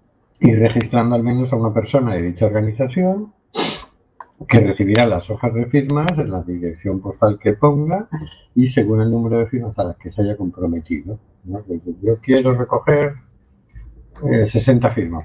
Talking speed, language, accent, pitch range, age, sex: 160 wpm, Spanish, Spanish, 95-120 Hz, 60-79, male